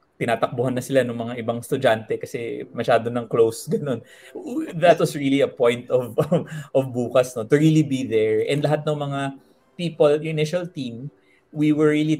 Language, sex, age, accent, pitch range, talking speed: Filipino, male, 30-49, native, 115-150 Hz, 170 wpm